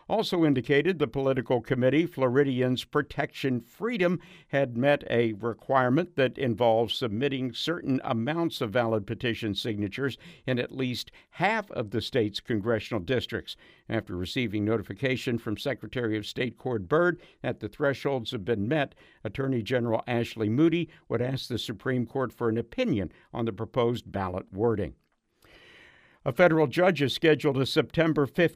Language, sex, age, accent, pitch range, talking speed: English, male, 60-79, American, 115-145 Hz, 145 wpm